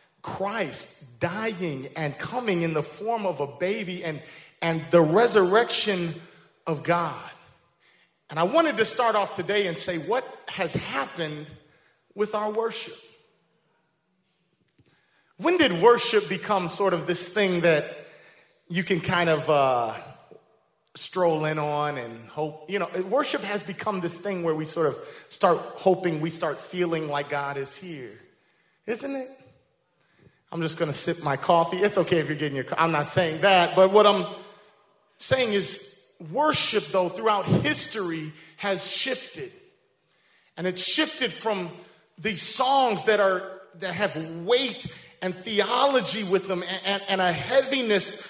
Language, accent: English, American